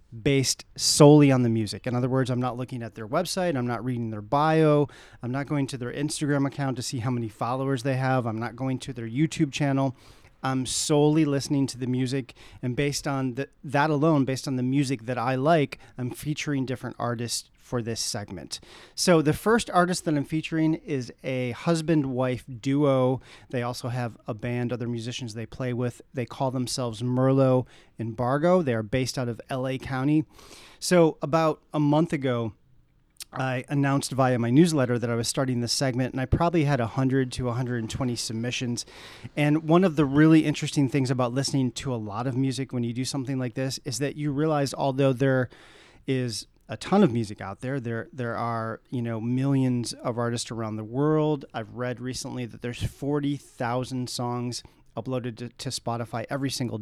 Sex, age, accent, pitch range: male, 30-49, American, 120-145 Hz